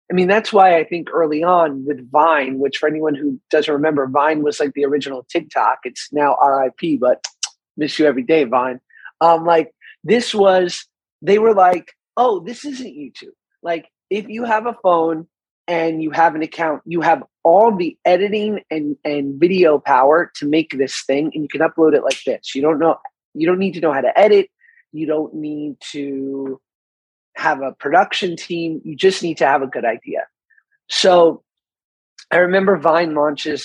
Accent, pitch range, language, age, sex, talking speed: American, 150-195 Hz, English, 30-49, male, 185 wpm